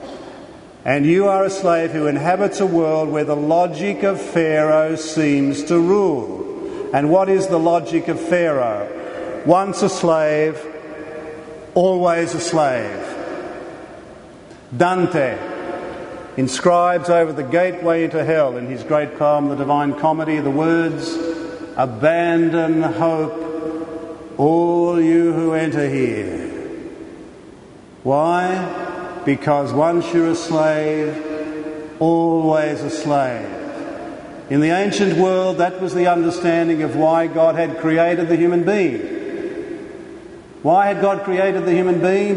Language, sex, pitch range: English, male, 160-195 Hz